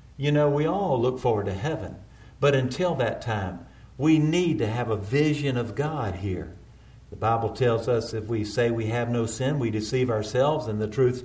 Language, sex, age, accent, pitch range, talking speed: English, male, 50-69, American, 110-140 Hz, 205 wpm